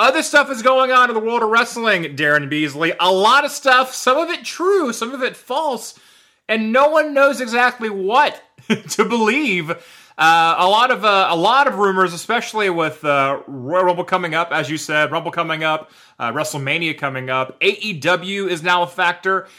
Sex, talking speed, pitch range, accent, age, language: male, 185 wpm, 150-220 Hz, American, 30-49, English